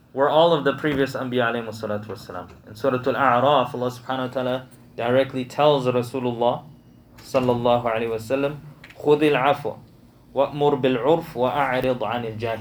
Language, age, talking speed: English, 20-39, 125 wpm